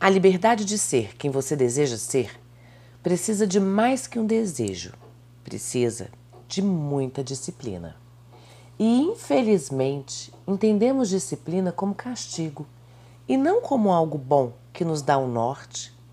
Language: Portuguese